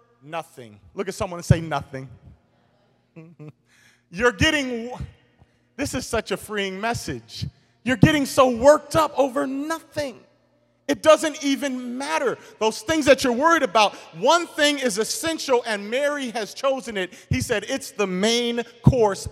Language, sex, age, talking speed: English, male, 40-59, 145 wpm